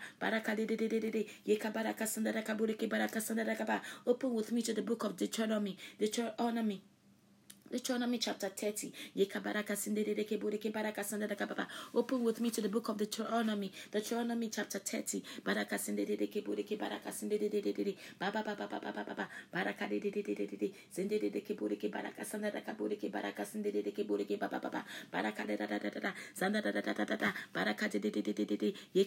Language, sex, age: English, female, 20-39